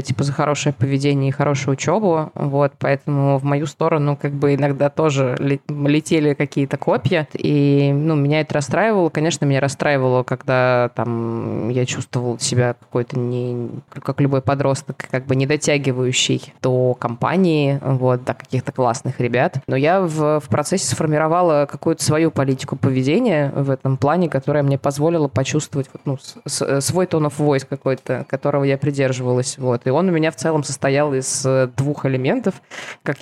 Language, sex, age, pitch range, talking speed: Russian, female, 20-39, 130-150 Hz, 160 wpm